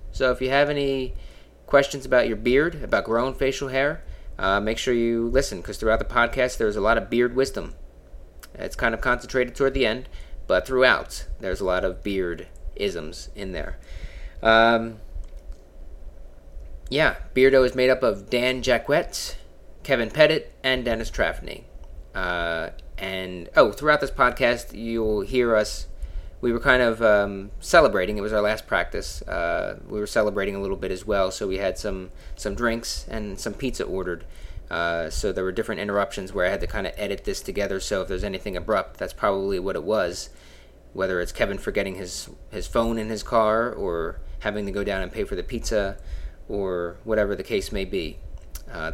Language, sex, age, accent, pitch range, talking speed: English, male, 30-49, American, 80-125 Hz, 185 wpm